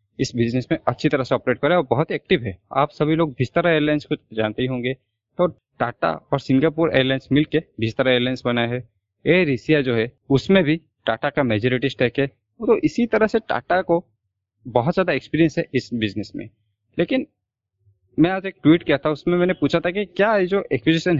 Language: Hindi